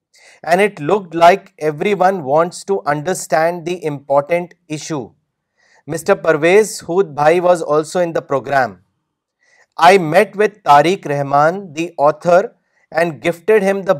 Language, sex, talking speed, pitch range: Urdu, male, 130 wpm, 160-195 Hz